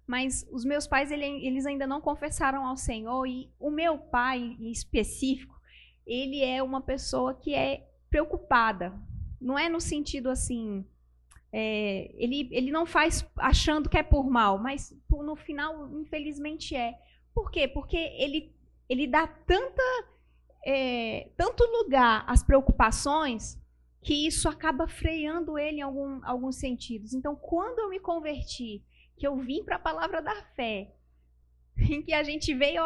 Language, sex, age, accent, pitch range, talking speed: Portuguese, female, 20-39, Brazilian, 240-315 Hz, 140 wpm